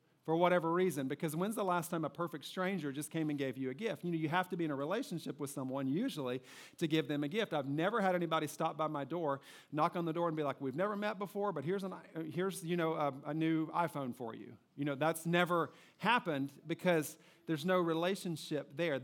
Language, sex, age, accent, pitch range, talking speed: English, male, 40-59, American, 140-175 Hz, 230 wpm